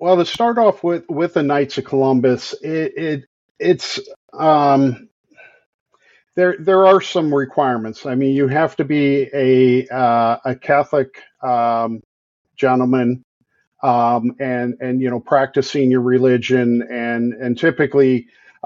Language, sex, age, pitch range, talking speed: English, male, 50-69, 125-145 Hz, 140 wpm